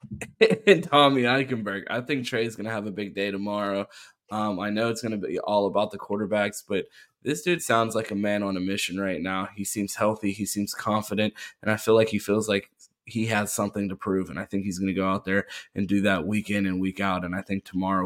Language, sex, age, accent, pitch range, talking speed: English, male, 20-39, American, 95-105 Hz, 240 wpm